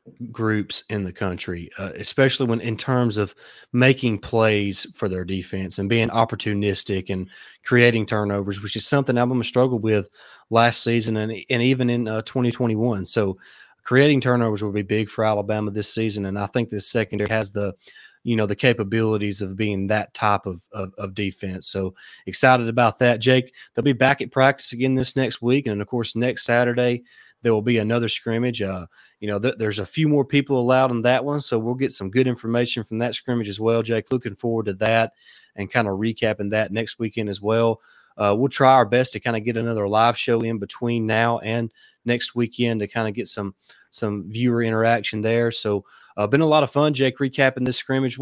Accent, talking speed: American, 210 wpm